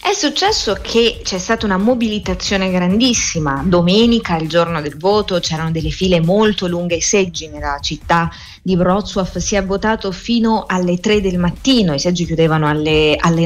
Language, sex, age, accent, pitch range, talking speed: Italian, female, 30-49, native, 155-215 Hz, 160 wpm